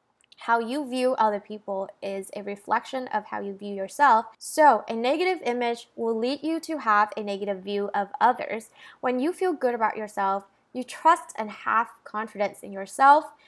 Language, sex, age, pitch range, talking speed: English, female, 10-29, 205-265 Hz, 180 wpm